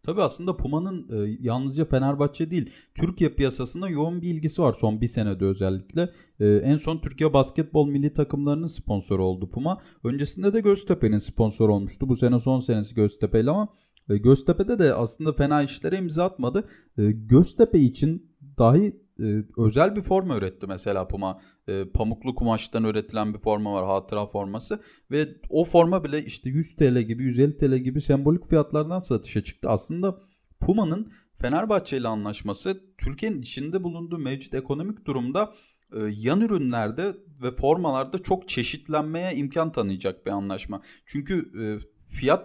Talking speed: 145 wpm